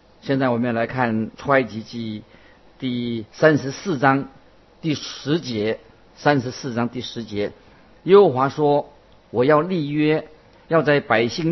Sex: male